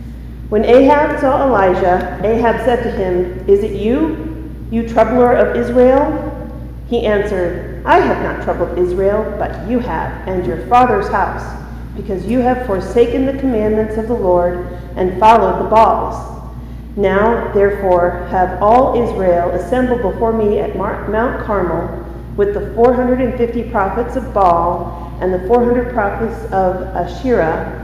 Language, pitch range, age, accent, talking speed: English, 185-240 Hz, 40-59, American, 140 wpm